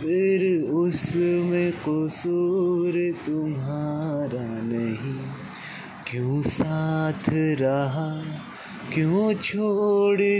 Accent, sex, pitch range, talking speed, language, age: native, male, 150-180 Hz, 65 wpm, Hindi, 20-39